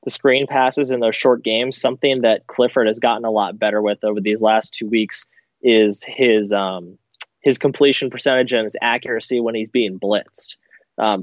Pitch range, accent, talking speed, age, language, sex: 115-140 Hz, American, 185 wpm, 20-39, English, male